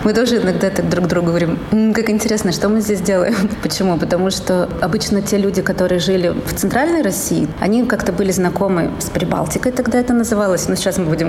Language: Russian